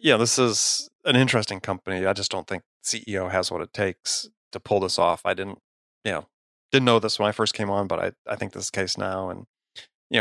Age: 30-49